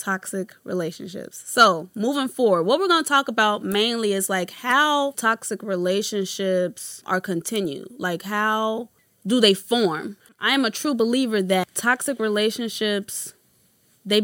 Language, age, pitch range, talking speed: English, 20-39, 190-245 Hz, 140 wpm